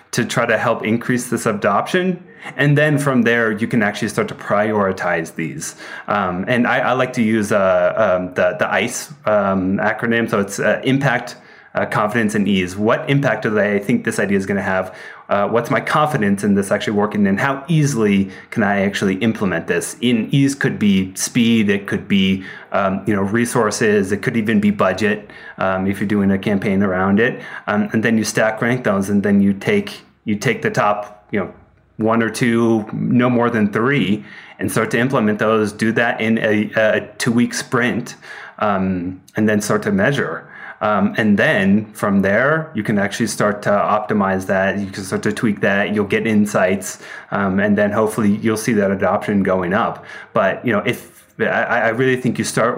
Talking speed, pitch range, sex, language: 200 wpm, 105-135 Hz, male, English